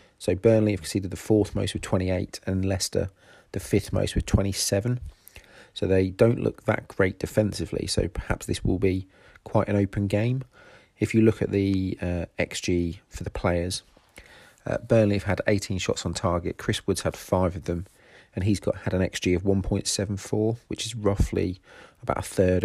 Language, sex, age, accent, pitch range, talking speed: English, male, 30-49, British, 90-105 Hz, 185 wpm